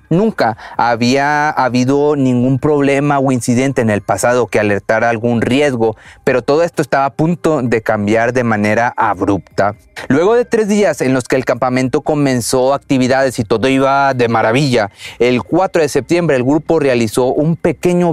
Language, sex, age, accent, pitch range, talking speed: Spanish, male, 30-49, Mexican, 115-155 Hz, 165 wpm